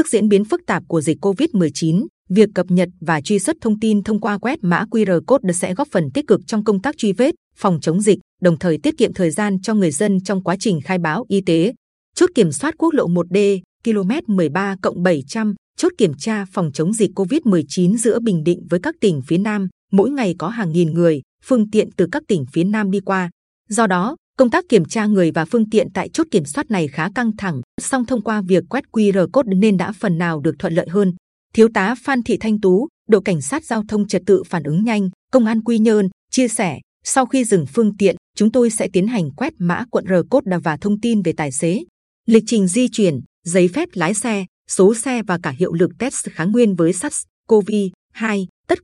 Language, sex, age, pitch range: Vietnamese, female, 20-39, 180-225 Hz